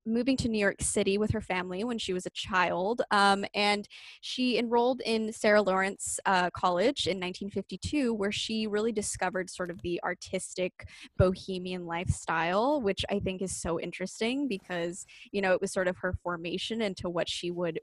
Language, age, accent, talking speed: English, 10-29, American, 180 wpm